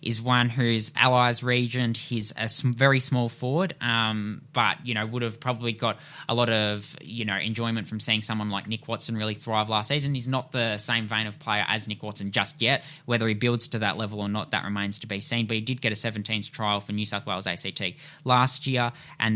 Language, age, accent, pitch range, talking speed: English, 10-29, Australian, 105-125 Hz, 235 wpm